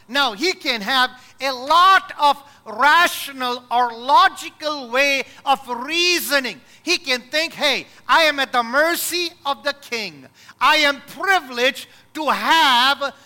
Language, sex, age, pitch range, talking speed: English, male, 50-69, 235-325 Hz, 135 wpm